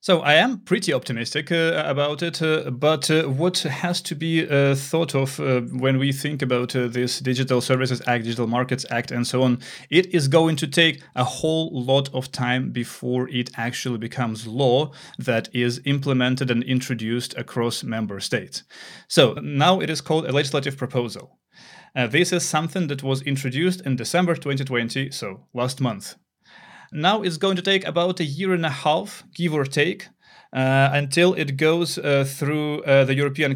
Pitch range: 130-160 Hz